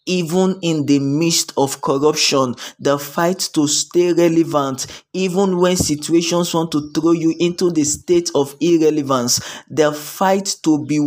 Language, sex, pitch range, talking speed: English, male, 135-170 Hz, 145 wpm